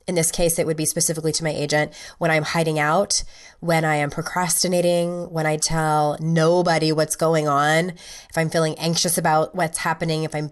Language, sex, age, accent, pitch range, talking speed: English, female, 20-39, American, 155-180 Hz, 195 wpm